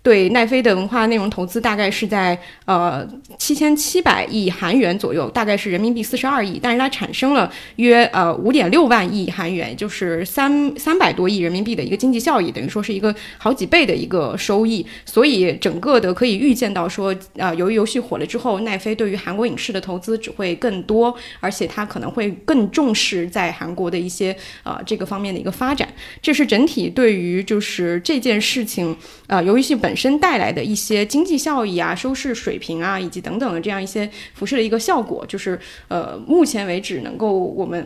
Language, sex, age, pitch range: Chinese, female, 20-39, 195-255 Hz